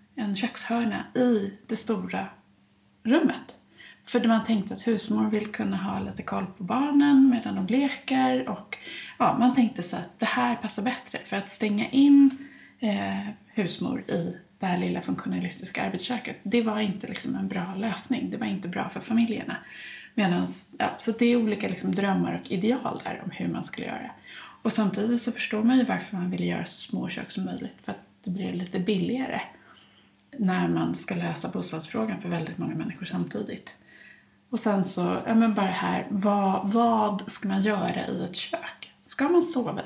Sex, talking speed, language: female, 180 wpm, Swedish